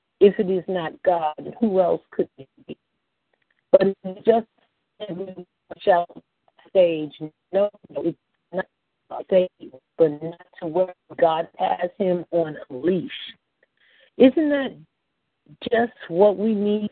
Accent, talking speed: American, 140 wpm